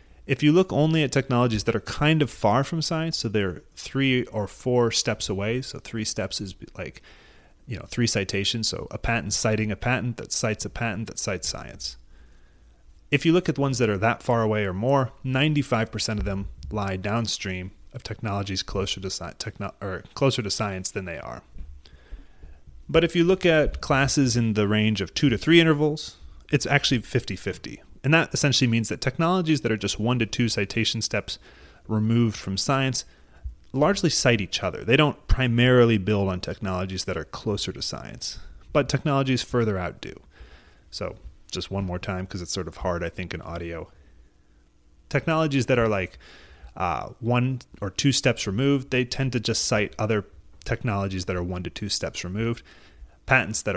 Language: English